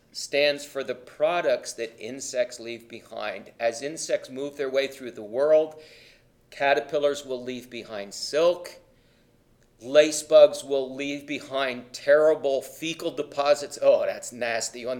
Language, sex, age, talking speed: English, male, 40-59, 130 wpm